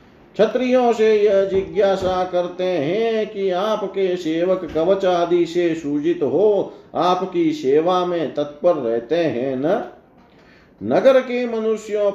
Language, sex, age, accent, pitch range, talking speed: Hindi, male, 50-69, native, 150-200 Hz, 120 wpm